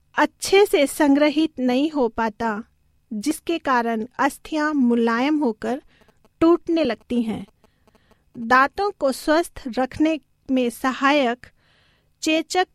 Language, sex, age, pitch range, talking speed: Hindi, female, 40-59, 250-305 Hz, 100 wpm